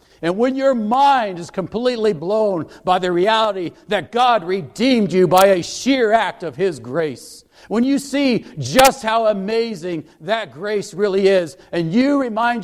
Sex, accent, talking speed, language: male, American, 160 wpm, English